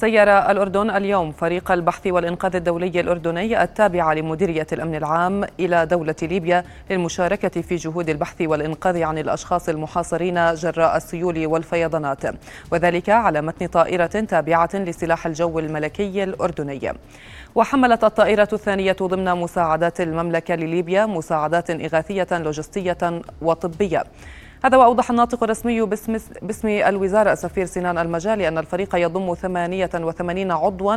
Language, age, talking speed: Arabic, 20-39, 120 wpm